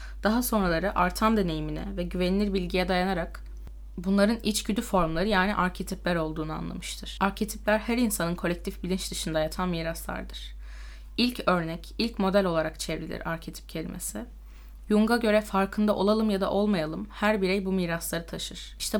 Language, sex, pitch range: Turkish, female, 180-210 Hz